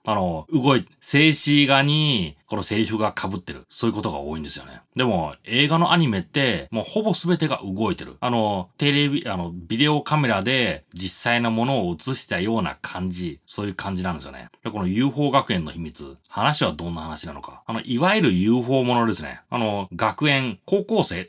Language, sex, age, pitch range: Japanese, male, 30-49, 95-150 Hz